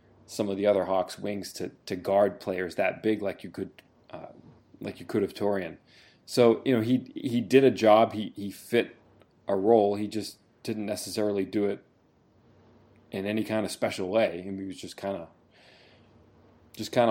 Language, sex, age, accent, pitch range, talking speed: English, male, 30-49, American, 95-110 Hz, 195 wpm